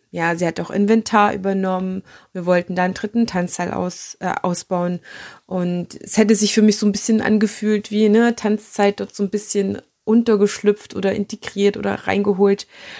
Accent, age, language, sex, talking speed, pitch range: German, 20-39, German, female, 170 wpm, 180-210 Hz